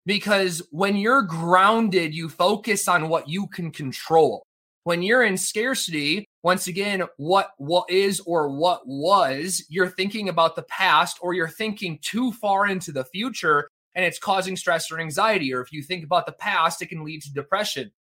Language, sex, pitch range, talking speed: English, male, 160-195 Hz, 180 wpm